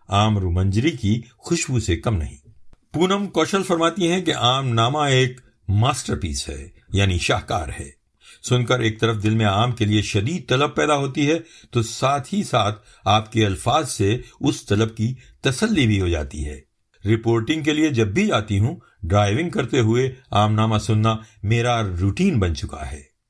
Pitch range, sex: 105-140 Hz, male